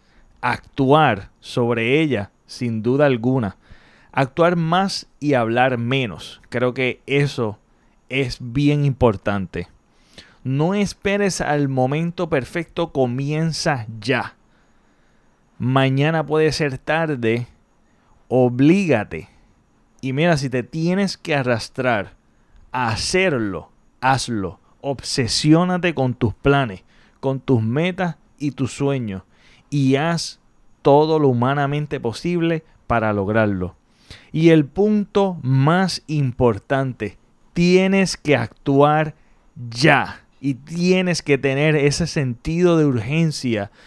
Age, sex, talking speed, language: 30-49, male, 100 wpm, Spanish